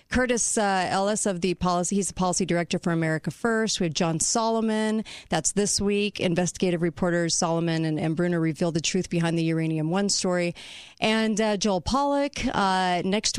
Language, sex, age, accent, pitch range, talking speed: English, female, 40-59, American, 170-210 Hz, 180 wpm